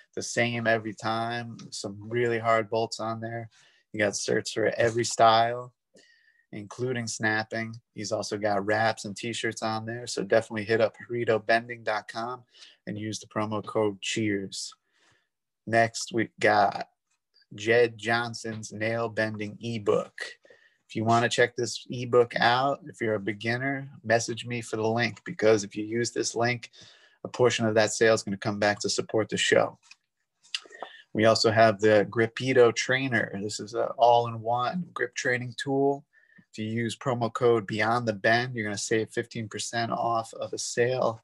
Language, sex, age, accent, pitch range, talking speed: English, male, 30-49, American, 110-120 Hz, 160 wpm